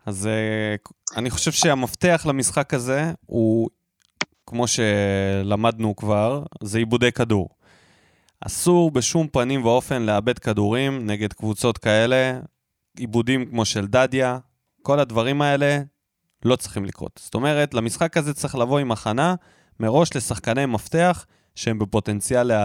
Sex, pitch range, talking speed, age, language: male, 110-160 Hz, 120 wpm, 20-39, Hebrew